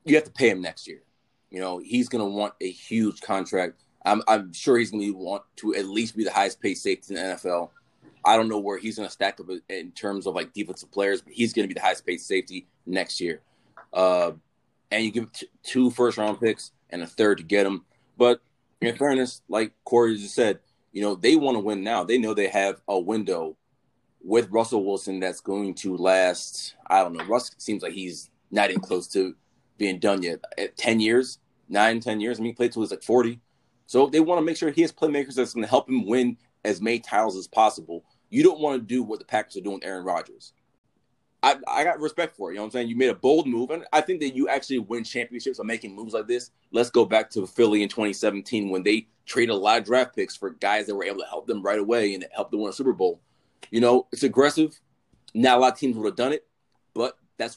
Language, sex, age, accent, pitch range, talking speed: English, male, 20-39, American, 100-125 Hz, 250 wpm